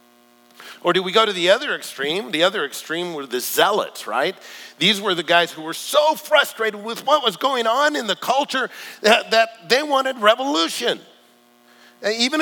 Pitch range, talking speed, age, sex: 120-195 Hz, 180 wpm, 50-69, male